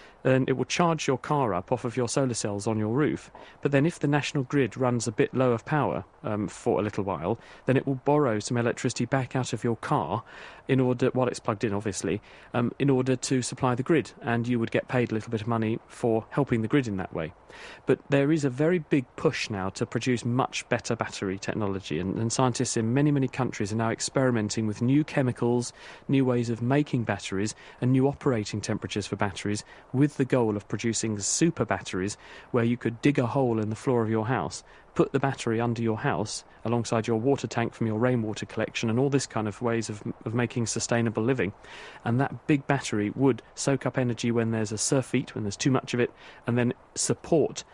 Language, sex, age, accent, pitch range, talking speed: English, male, 40-59, British, 110-130 Hz, 220 wpm